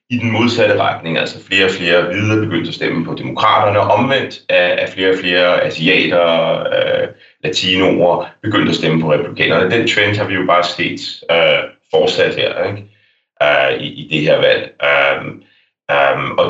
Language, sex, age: English, male, 30-49